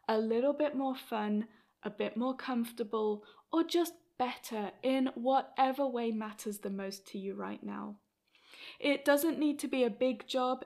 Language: English